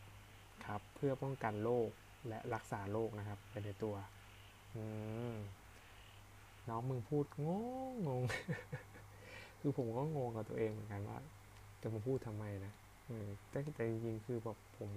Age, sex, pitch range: 20-39, male, 100-120 Hz